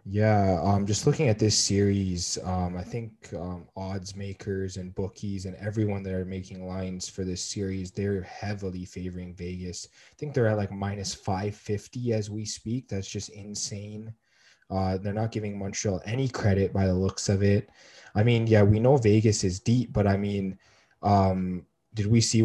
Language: English